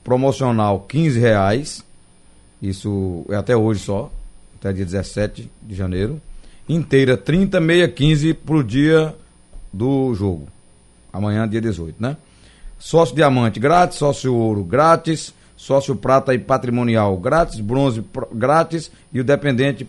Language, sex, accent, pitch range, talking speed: Portuguese, male, Brazilian, 95-135 Hz, 125 wpm